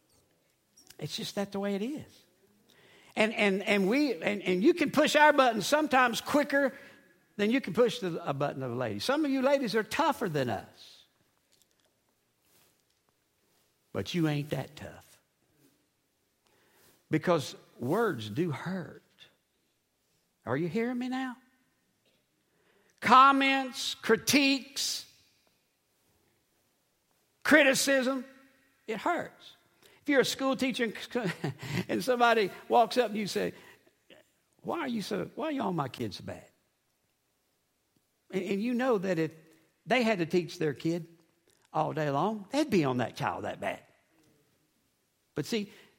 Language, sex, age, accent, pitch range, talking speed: English, male, 60-79, American, 185-270 Hz, 135 wpm